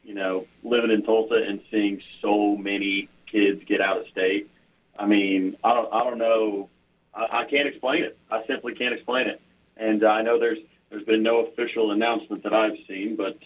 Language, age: English, 40-59